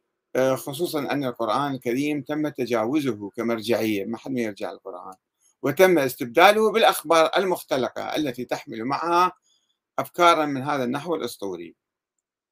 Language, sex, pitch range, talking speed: Arabic, male, 120-165 Hz, 115 wpm